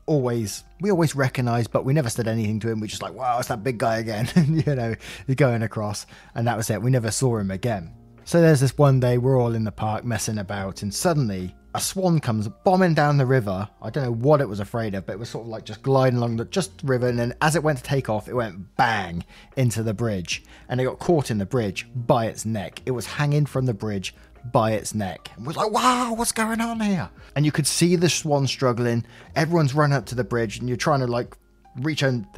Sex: male